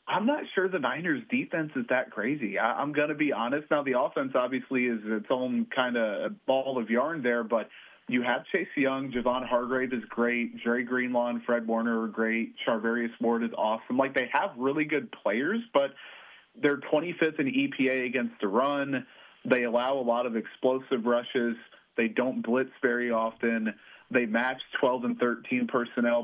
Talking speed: 185 wpm